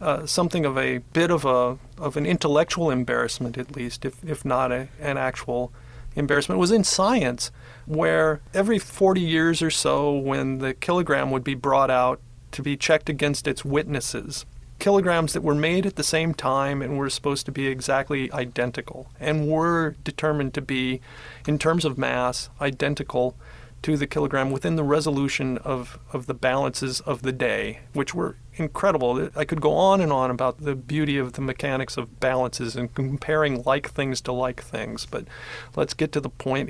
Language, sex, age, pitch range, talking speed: English, male, 40-59, 130-155 Hz, 180 wpm